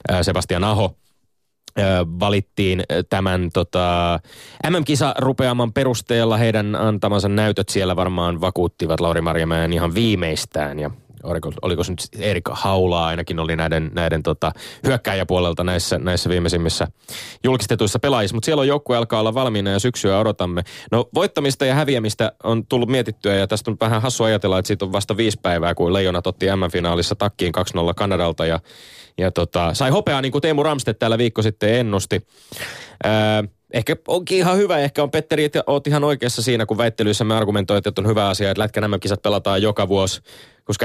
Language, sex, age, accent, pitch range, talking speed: Finnish, male, 20-39, native, 90-115 Hz, 160 wpm